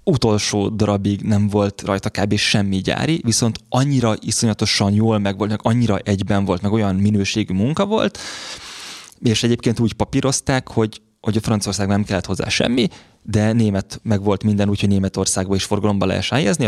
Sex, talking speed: male, 160 wpm